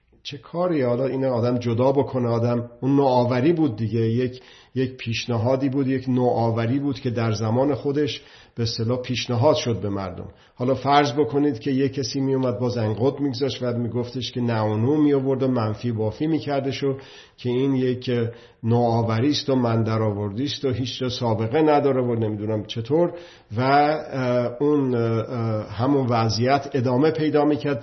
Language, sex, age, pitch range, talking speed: Persian, male, 50-69, 115-140 Hz, 165 wpm